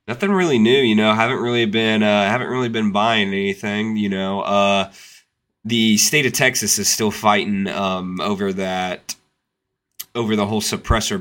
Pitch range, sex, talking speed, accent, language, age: 95-110 Hz, male, 165 wpm, American, English, 20-39